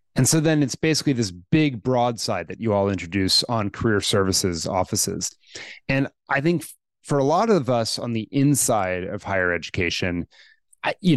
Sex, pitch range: male, 105-145 Hz